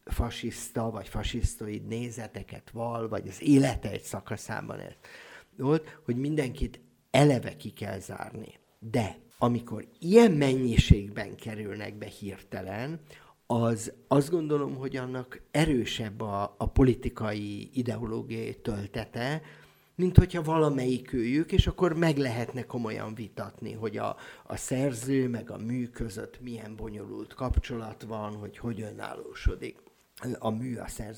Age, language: 50-69, Hungarian